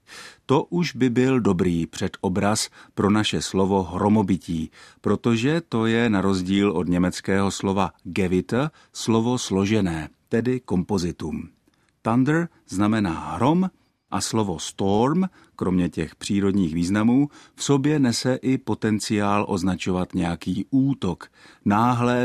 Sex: male